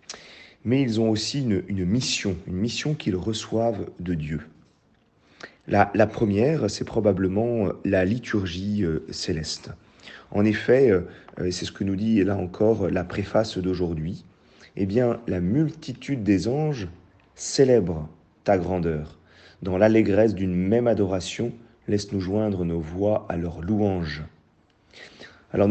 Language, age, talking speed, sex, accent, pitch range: French, 40-59, 130 wpm, male, French, 90-110 Hz